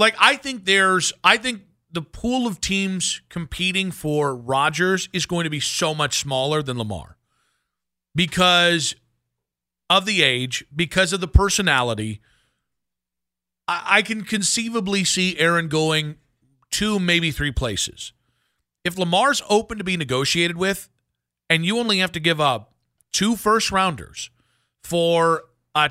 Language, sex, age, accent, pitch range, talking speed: English, male, 40-59, American, 130-195 Hz, 135 wpm